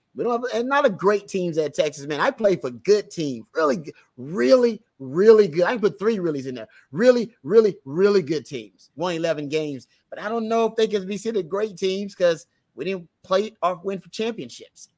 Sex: male